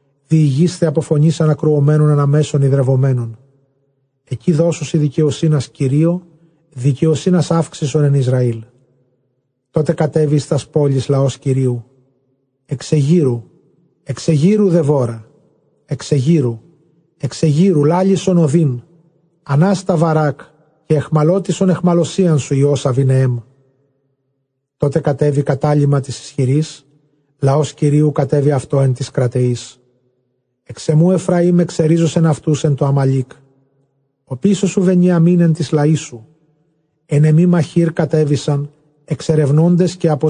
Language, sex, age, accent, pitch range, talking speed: English, male, 40-59, Greek, 135-160 Hz, 105 wpm